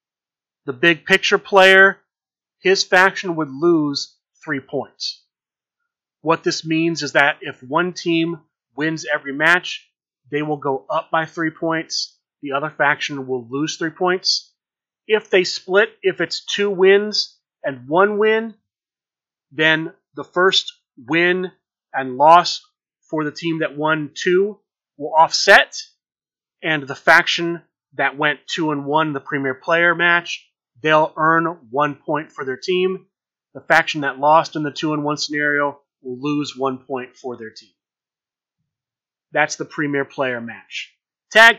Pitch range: 145-185 Hz